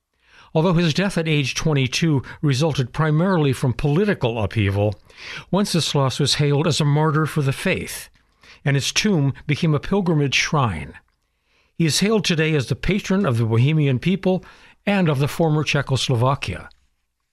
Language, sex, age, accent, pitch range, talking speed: English, male, 60-79, American, 125-165 Hz, 150 wpm